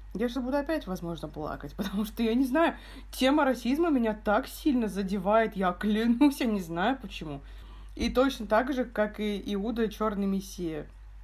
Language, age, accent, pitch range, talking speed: Russian, 20-39, native, 190-235 Hz, 170 wpm